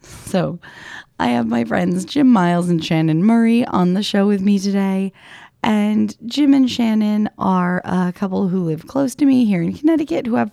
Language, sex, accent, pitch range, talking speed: English, female, American, 165-235 Hz, 190 wpm